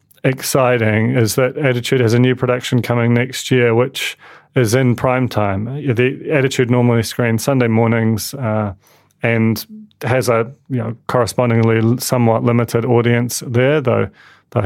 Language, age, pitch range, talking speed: English, 30-49, 115-130 Hz, 145 wpm